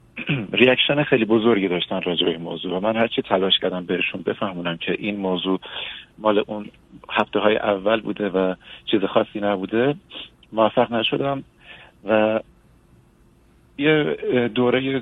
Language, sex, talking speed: Persian, male, 125 wpm